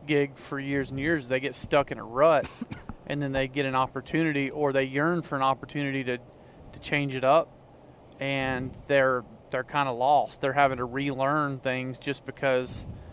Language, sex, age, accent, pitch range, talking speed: English, male, 30-49, American, 130-150 Hz, 185 wpm